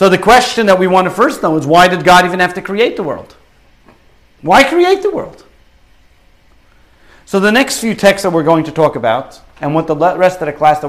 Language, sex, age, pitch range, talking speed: English, male, 50-69, 145-185 Hz, 230 wpm